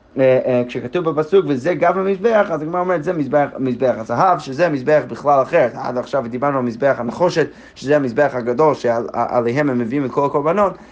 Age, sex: 30-49, male